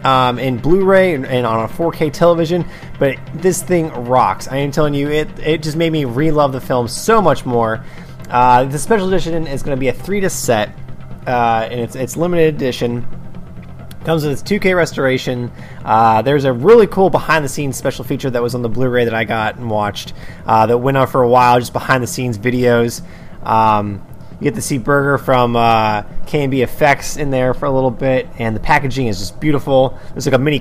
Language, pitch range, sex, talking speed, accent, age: English, 120-150 Hz, male, 210 wpm, American, 20-39